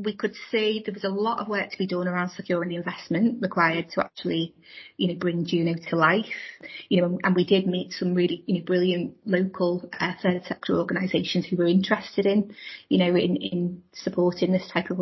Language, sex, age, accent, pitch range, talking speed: English, female, 30-49, British, 175-195 Hz, 210 wpm